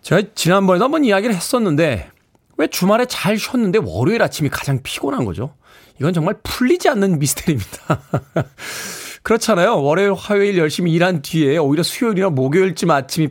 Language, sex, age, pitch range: Korean, male, 40-59, 130-190 Hz